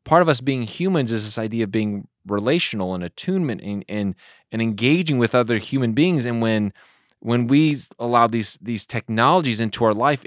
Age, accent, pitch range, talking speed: 30-49, American, 105-135 Hz, 185 wpm